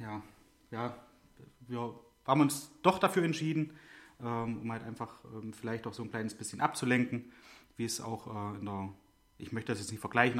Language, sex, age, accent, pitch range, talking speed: German, male, 30-49, German, 105-125 Hz, 165 wpm